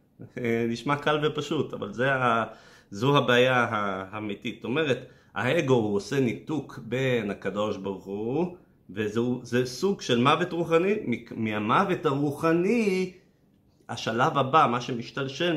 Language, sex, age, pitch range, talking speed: Hebrew, male, 30-49, 105-140 Hz, 110 wpm